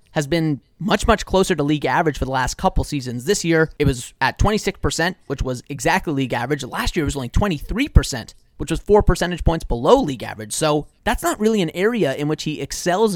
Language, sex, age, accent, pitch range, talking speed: English, male, 30-49, American, 125-165 Hz, 220 wpm